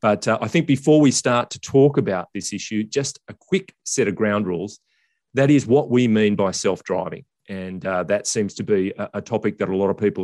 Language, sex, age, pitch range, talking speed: English, male, 30-49, 100-125 Hz, 230 wpm